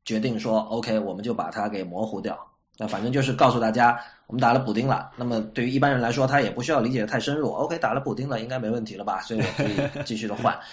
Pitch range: 110-135 Hz